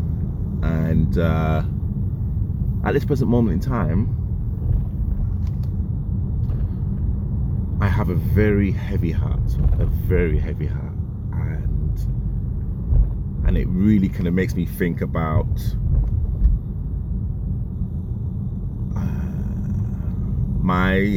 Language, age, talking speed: English, 30-49, 85 wpm